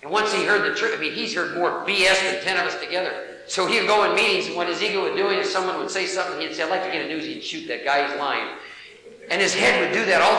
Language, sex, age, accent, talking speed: English, male, 50-69, American, 320 wpm